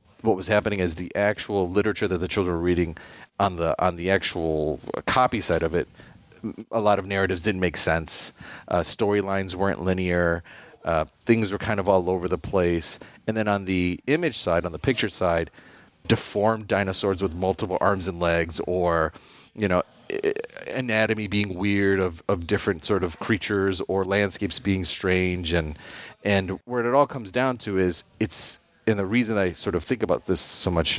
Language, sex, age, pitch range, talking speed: English, male, 30-49, 90-105 Hz, 185 wpm